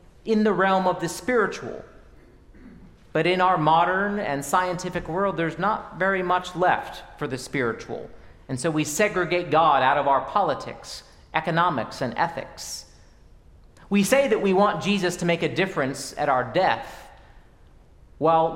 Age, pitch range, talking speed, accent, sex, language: 40-59, 140-190 Hz, 150 wpm, American, male, English